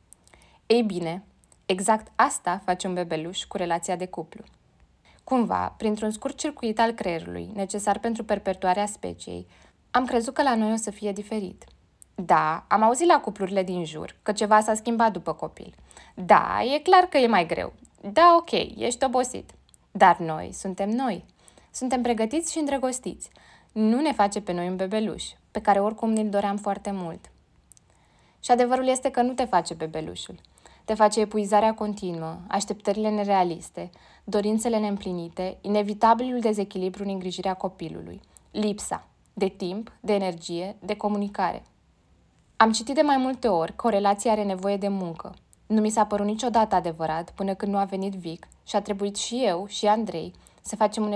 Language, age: Romanian, 20-39